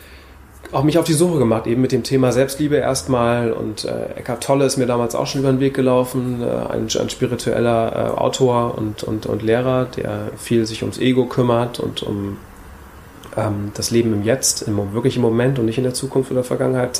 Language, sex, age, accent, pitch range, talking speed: German, male, 30-49, German, 105-125 Hz, 210 wpm